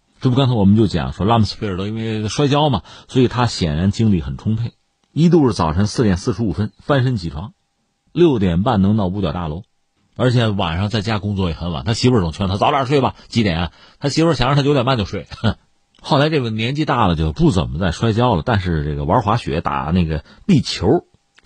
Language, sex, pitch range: Chinese, male, 85-125 Hz